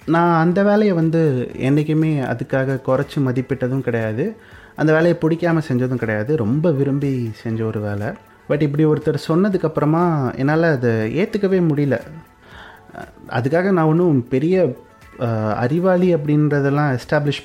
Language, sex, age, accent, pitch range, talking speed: Tamil, male, 30-49, native, 120-165 Hz, 115 wpm